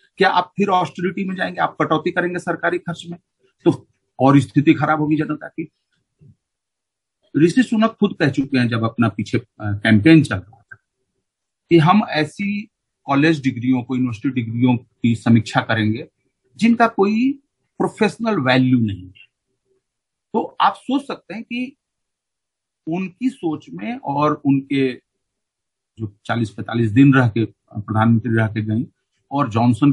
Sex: male